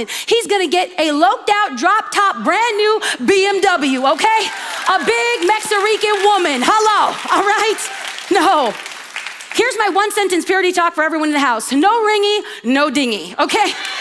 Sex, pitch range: female, 250-360 Hz